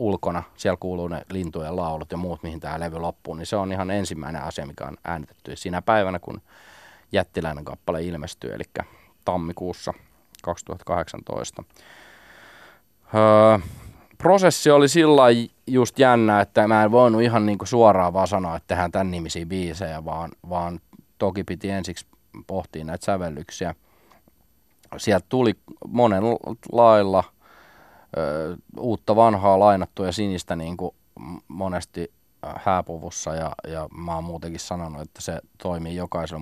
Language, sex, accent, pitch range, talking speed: Finnish, male, native, 85-105 Hz, 135 wpm